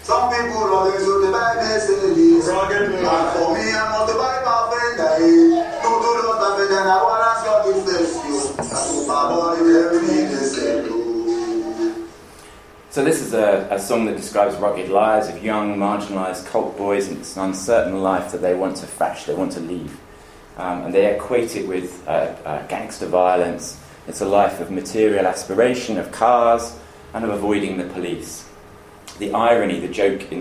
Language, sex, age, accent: English, male, 30-49, British